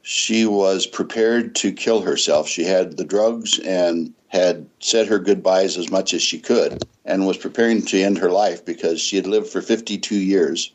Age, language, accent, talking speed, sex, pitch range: 60-79, English, American, 190 wpm, male, 95-120 Hz